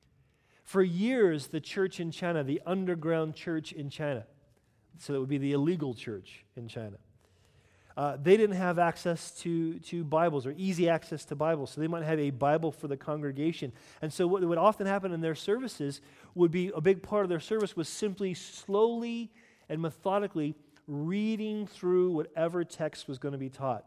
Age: 40-59